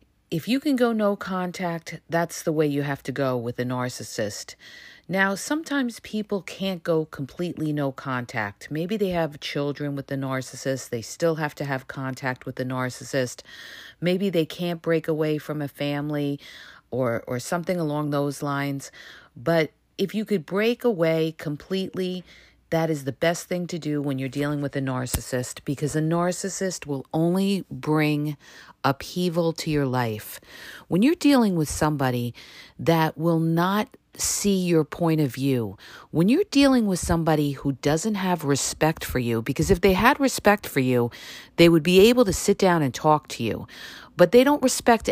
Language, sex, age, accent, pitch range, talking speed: English, female, 40-59, American, 140-190 Hz, 175 wpm